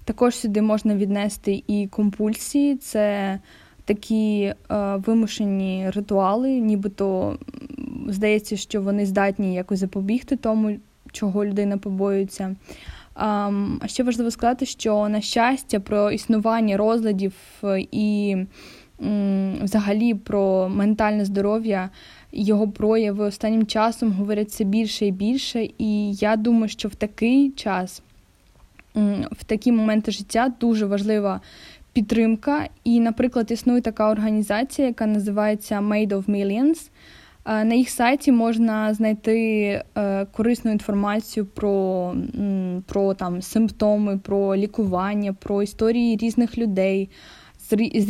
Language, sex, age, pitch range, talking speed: Ukrainian, female, 10-29, 200-230 Hz, 105 wpm